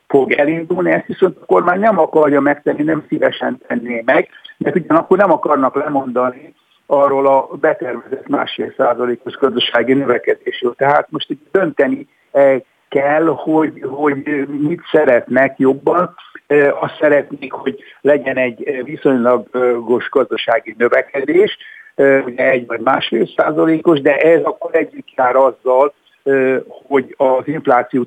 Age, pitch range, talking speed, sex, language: 60-79, 135-220 Hz, 120 wpm, male, Hungarian